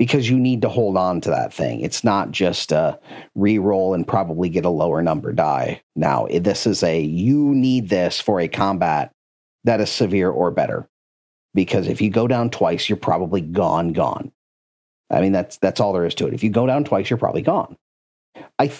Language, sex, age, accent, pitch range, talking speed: English, male, 40-59, American, 95-120 Hz, 205 wpm